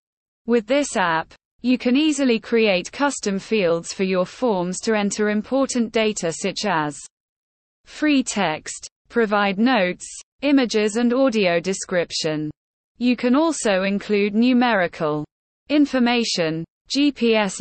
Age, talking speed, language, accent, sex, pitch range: 20-39, 110 wpm, English, British, female, 180-245 Hz